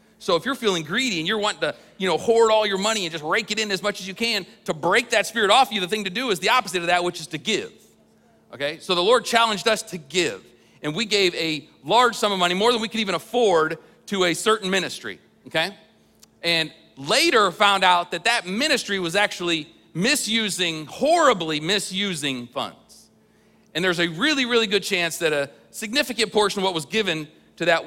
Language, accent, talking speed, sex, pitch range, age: English, American, 220 wpm, male, 165-220 Hz, 40-59